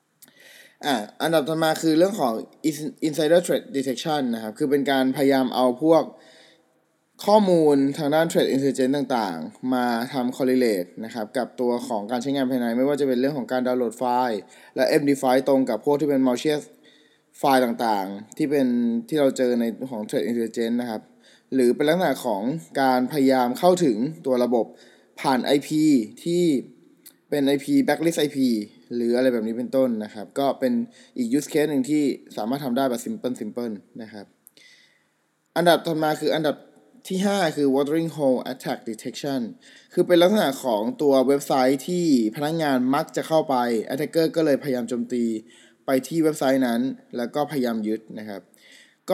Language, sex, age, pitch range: Thai, male, 20-39, 125-160 Hz